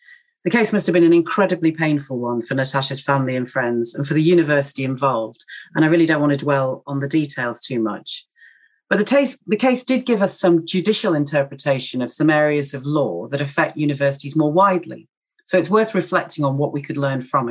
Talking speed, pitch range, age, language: 210 wpm, 140-180 Hz, 40-59, English